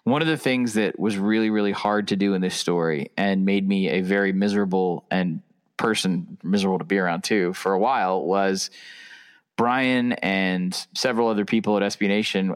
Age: 20-39